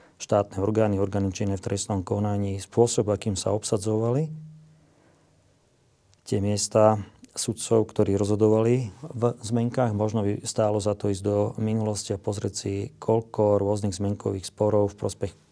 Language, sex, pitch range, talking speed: Slovak, male, 100-115 Hz, 130 wpm